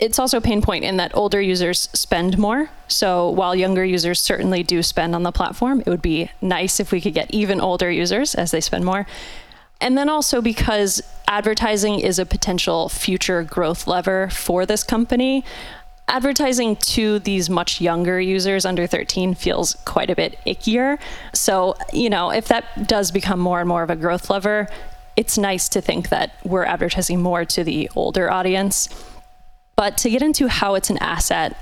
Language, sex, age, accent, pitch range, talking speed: English, female, 10-29, American, 180-220 Hz, 185 wpm